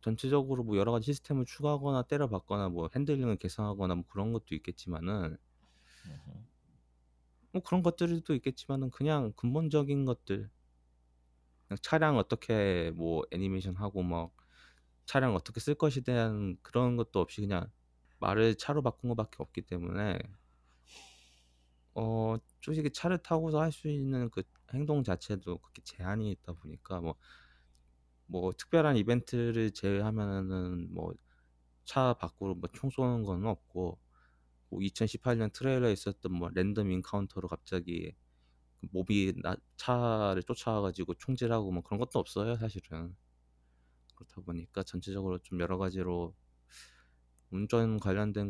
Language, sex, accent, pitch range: Korean, male, native, 85-115 Hz